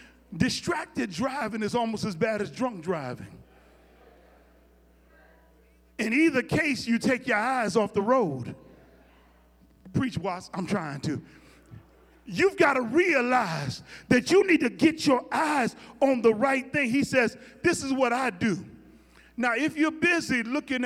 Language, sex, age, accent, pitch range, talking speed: English, male, 40-59, American, 200-270 Hz, 145 wpm